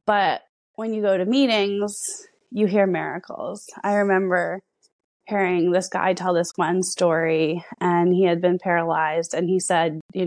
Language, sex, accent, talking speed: English, female, American, 160 wpm